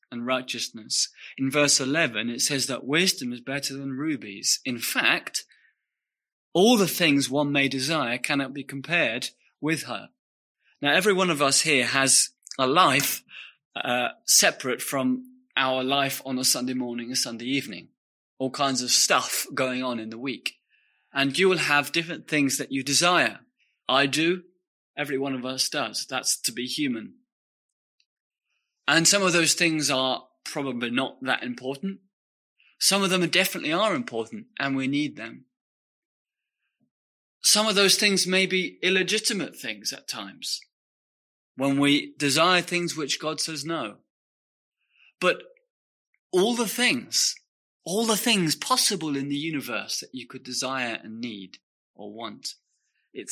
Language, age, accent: English, 30-49, British